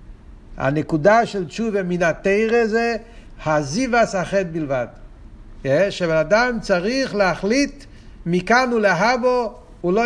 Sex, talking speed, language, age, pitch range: male, 100 wpm, Hebrew, 60-79, 165-220 Hz